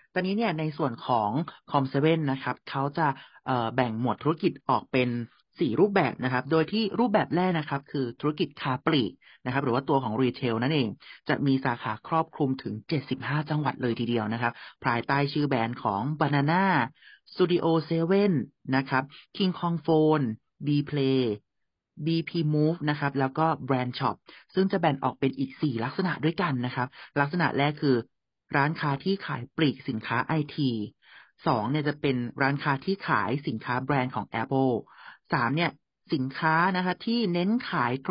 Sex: male